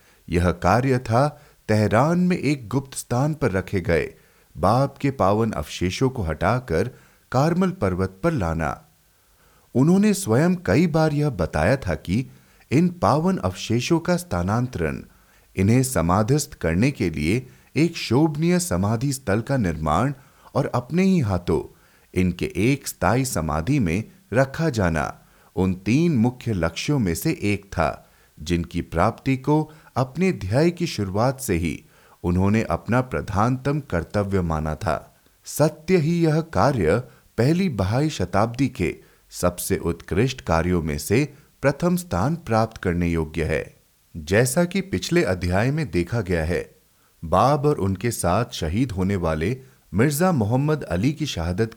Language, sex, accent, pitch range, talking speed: Hindi, male, native, 90-145 Hz, 135 wpm